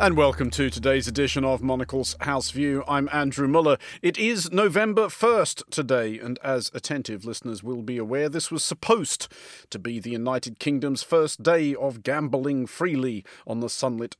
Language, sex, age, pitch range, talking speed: English, male, 40-59, 120-170 Hz, 170 wpm